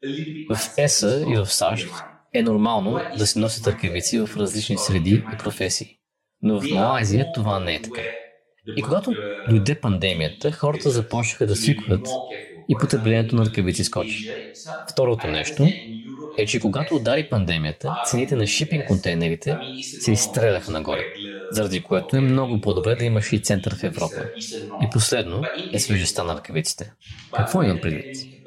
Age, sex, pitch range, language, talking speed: 20-39, male, 100-130 Hz, Bulgarian, 150 wpm